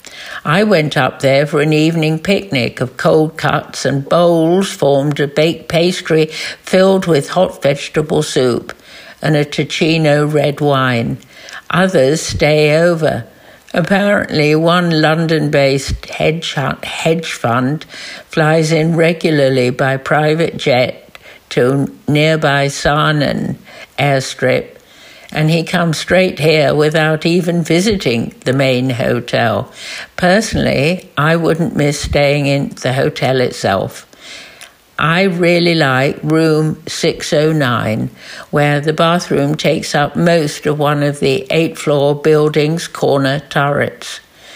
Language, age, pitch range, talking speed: English, 60-79, 140-165 Hz, 115 wpm